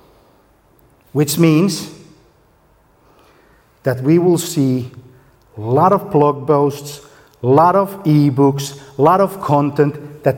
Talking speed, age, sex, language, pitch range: 115 wpm, 50-69, male, Finnish, 115-145 Hz